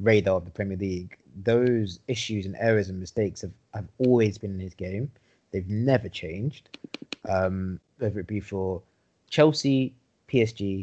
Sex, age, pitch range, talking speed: male, 20-39, 95-110 Hz, 155 wpm